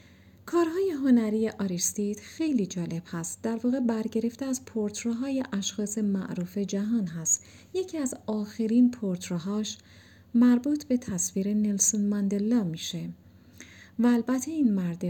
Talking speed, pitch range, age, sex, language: 120 wpm, 185-255 Hz, 40-59, female, Persian